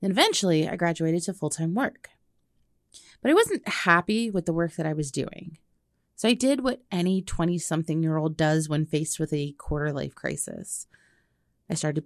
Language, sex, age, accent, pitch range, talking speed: English, female, 30-49, American, 155-200 Hz, 190 wpm